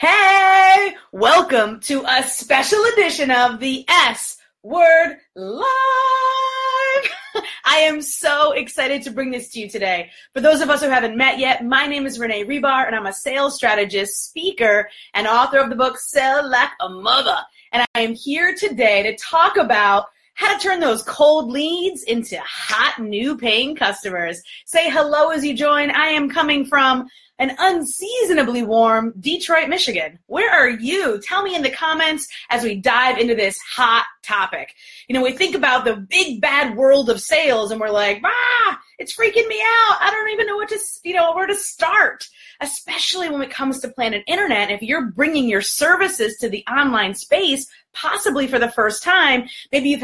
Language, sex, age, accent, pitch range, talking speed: English, female, 30-49, American, 235-340 Hz, 180 wpm